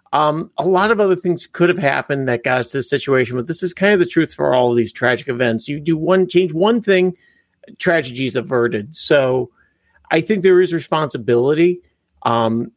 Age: 50-69